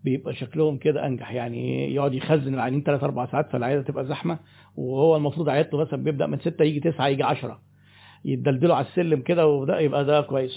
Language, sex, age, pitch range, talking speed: Arabic, male, 50-69, 135-170 Hz, 180 wpm